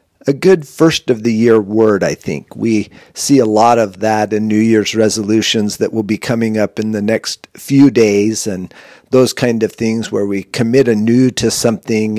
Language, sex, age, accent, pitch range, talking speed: English, male, 50-69, American, 105-130 Hz, 195 wpm